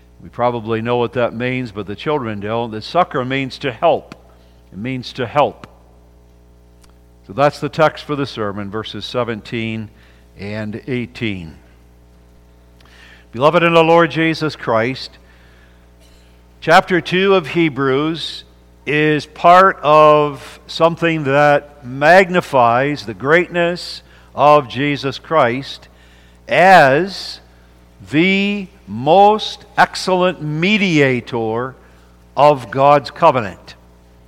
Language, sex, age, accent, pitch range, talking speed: English, male, 60-79, American, 105-175 Hz, 105 wpm